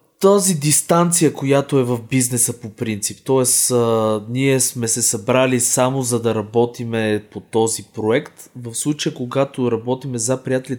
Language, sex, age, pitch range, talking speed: Bulgarian, male, 20-39, 115-140 Hz, 145 wpm